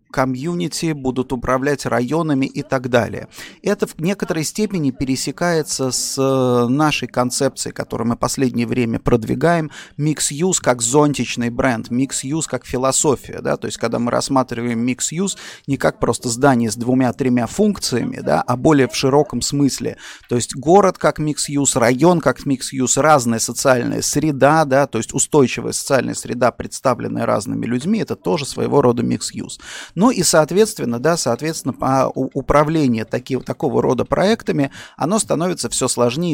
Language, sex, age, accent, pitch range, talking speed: Russian, male, 30-49, native, 125-155 Hz, 145 wpm